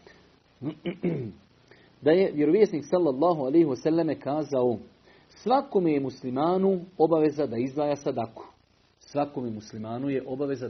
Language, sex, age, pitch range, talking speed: Croatian, male, 50-69, 140-185 Hz, 90 wpm